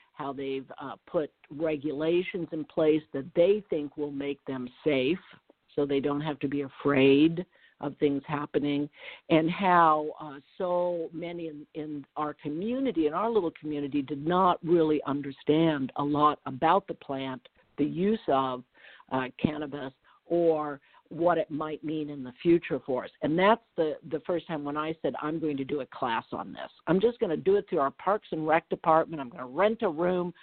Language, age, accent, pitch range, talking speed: English, 50-69, American, 145-180 Hz, 190 wpm